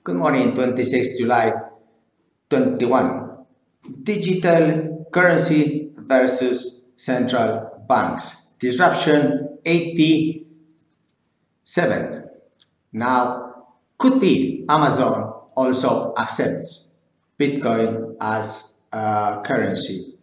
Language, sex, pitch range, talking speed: English, male, 105-145 Hz, 65 wpm